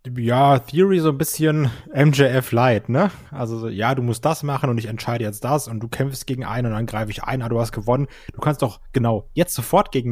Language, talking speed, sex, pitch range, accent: German, 230 wpm, male, 110-125 Hz, German